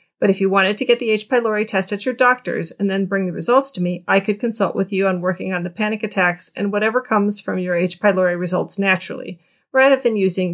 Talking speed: 245 wpm